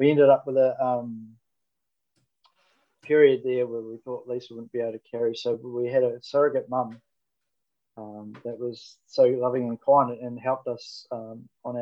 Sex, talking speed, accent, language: male, 175 wpm, Australian, English